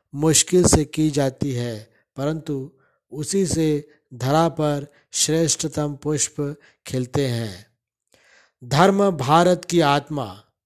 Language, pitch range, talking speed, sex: Hindi, 150-170 Hz, 100 wpm, male